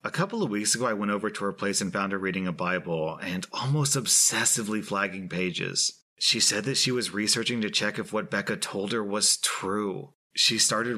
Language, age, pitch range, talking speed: English, 30-49, 95-130 Hz, 215 wpm